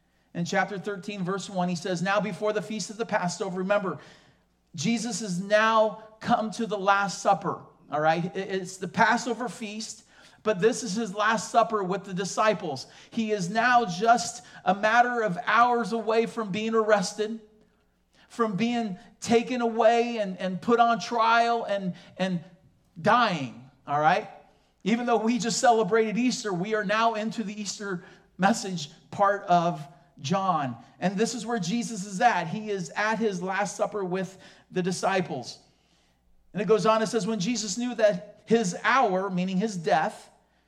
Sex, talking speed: male, 165 wpm